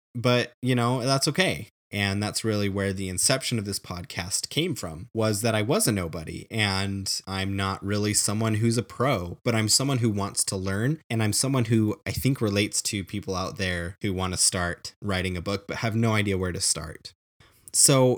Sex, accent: male, American